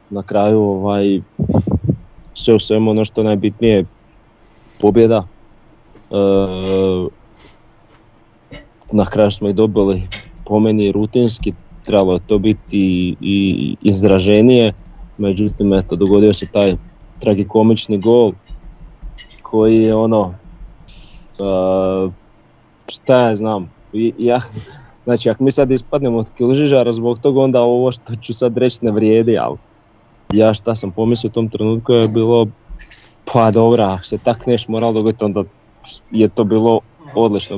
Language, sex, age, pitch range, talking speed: Croatian, male, 30-49, 100-115 Hz, 125 wpm